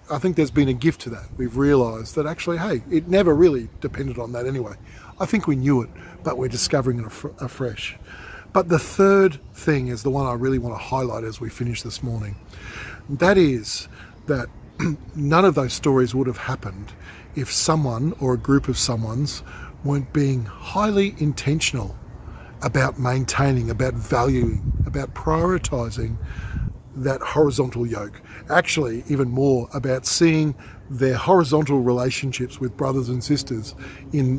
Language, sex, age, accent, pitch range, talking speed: English, male, 40-59, Australian, 115-150 Hz, 155 wpm